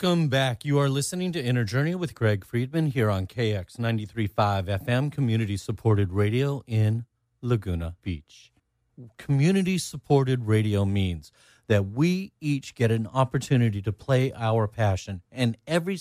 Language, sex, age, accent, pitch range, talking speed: English, male, 40-59, American, 105-135 Hz, 140 wpm